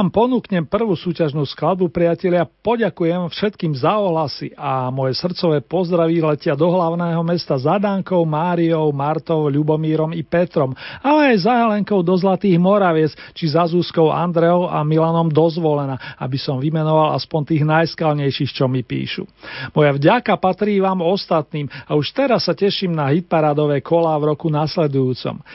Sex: male